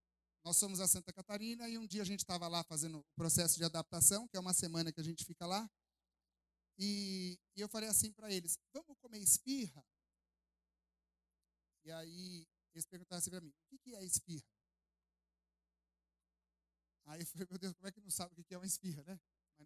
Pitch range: 140-205 Hz